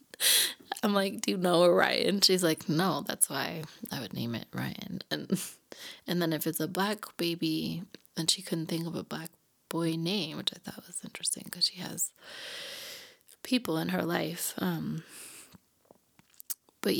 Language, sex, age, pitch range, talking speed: English, female, 20-39, 160-190 Hz, 165 wpm